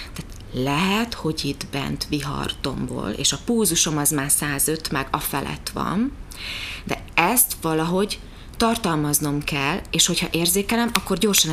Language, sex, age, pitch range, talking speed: Hungarian, female, 30-49, 140-195 Hz, 130 wpm